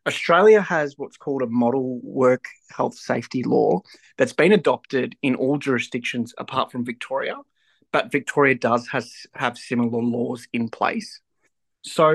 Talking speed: 145 wpm